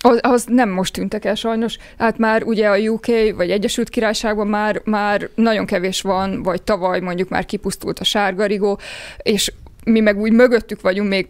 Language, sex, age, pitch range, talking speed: Hungarian, female, 20-39, 195-235 Hz, 180 wpm